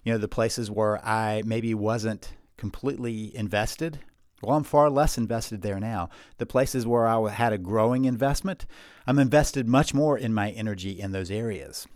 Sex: male